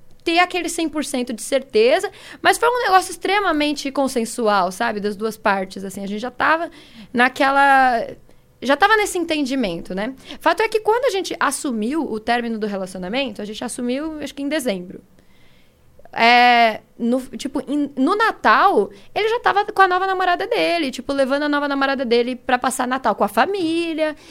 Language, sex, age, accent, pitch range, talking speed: Portuguese, female, 10-29, Brazilian, 225-320 Hz, 175 wpm